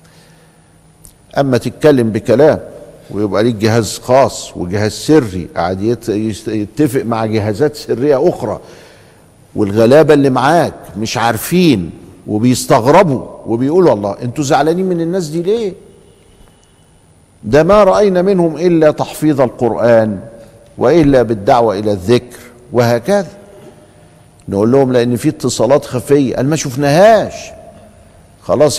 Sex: male